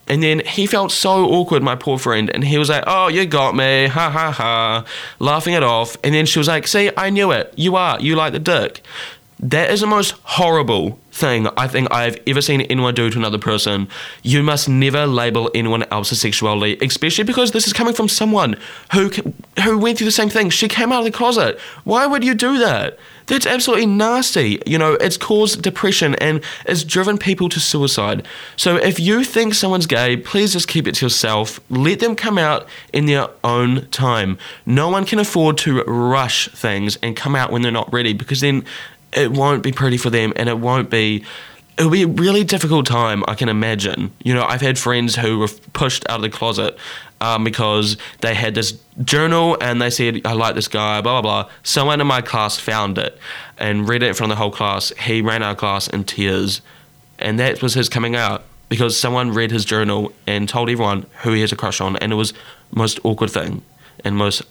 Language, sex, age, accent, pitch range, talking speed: English, male, 10-29, Australian, 110-170 Hz, 215 wpm